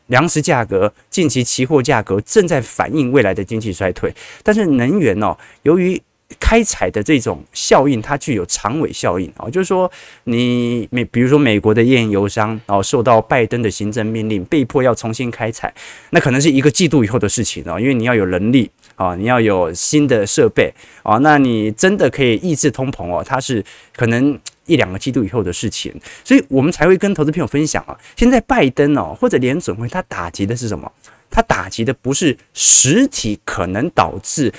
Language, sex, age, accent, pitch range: Chinese, male, 20-39, native, 110-165 Hz